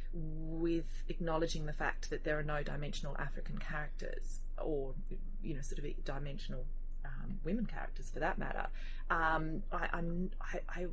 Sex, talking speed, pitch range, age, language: female, 150 wpm, 140-170 Hz, 30-49, English